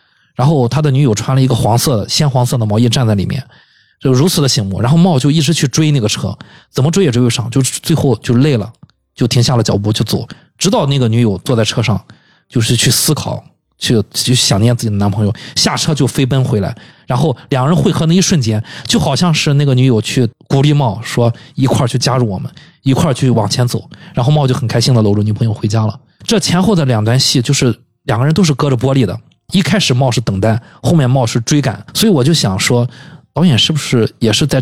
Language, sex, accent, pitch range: Chinese, male, native, 115-155 Hz